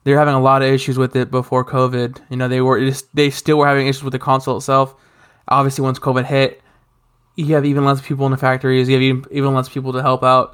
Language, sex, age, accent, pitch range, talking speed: English, male, 20-39, American, 130-140 Hz, 255 wpm